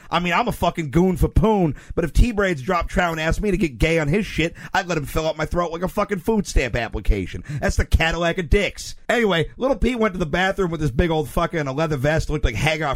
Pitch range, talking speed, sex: 145-195 Hz, 280 wpm, male